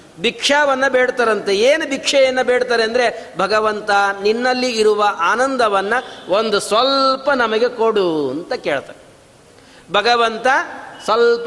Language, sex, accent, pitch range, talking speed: Kannada, male, native, 190-255 Hz, 95 wpm